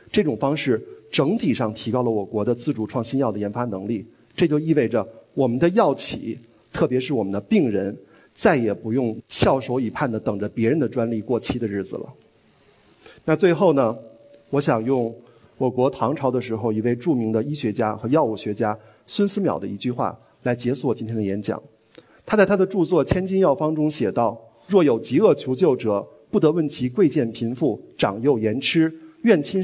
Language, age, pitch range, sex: Chinese, 50-69, 115-155 Hz, male